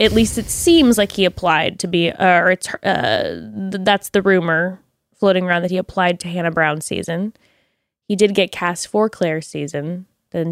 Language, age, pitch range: English, 20-39, 170-210 Hz